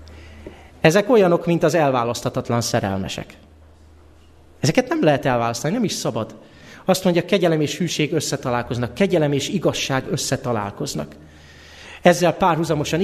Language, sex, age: Hungarian, male, 30-49